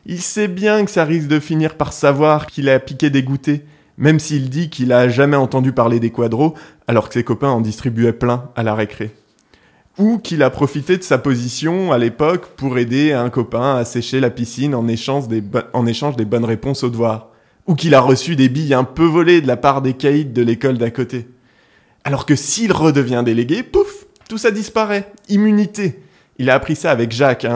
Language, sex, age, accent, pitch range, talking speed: French, male, 20-39, French, 120-155 Hz, 210 wpm